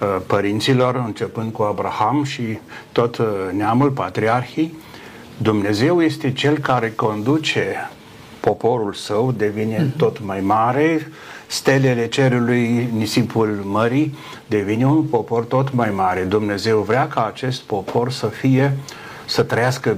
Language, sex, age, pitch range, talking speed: Romanian, male, 60-79, 110-135 Hz, 115 wpm